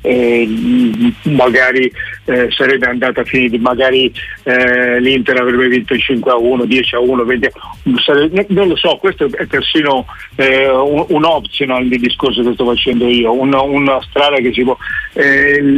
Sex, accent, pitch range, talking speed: male, native, 125-155 Hz, 160 wpm